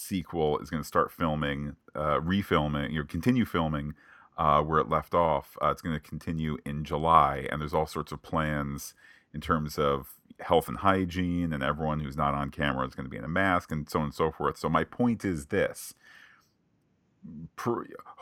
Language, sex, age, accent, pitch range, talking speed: English, male, 40-59, American, 75-85 Hz, 200 wpm